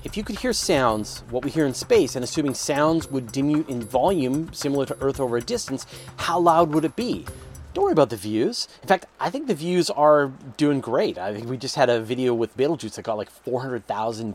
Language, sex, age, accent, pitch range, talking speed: English, male, 30-49, American, 125-175 Hz, 235 wpm